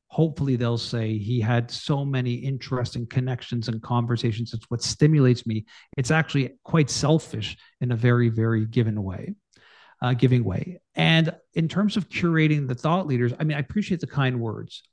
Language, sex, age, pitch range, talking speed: English, male, 50-69, 120-150 Hz, 165 wpm